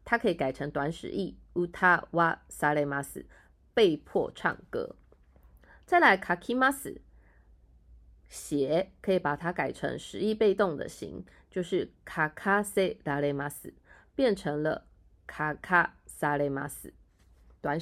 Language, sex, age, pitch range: Japanese, female, 20-39, 145-215 Hz